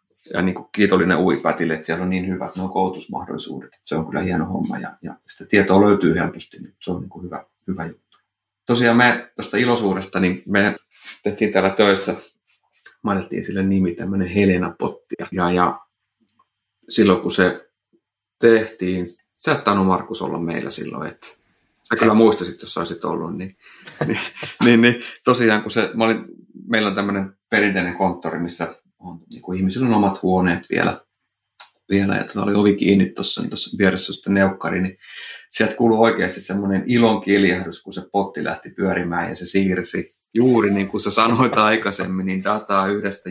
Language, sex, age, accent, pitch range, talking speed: Finnish, male, 30-49, native, 90-105 Hz, 170 wpm